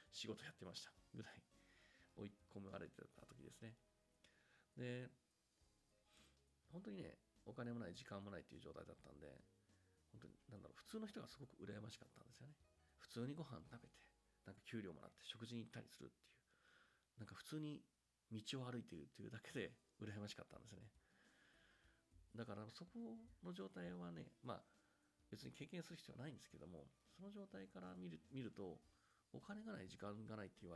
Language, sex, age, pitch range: Japanese, male, 40-59, 95-140 Hz